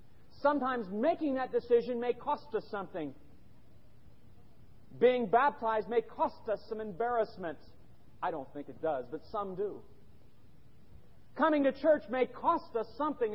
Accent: American